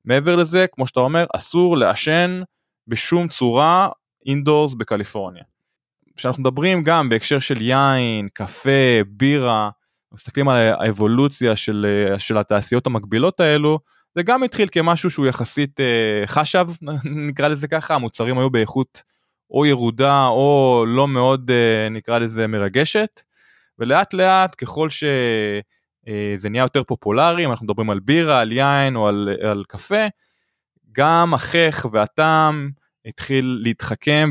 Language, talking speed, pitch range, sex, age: Hebrew, 125 wpm, 115-155 Hz, male, 20-39